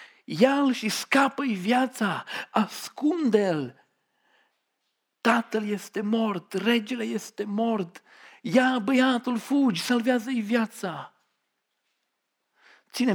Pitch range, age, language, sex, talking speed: 190-240 Hz, 50-69, Romanian, male, 80 wpm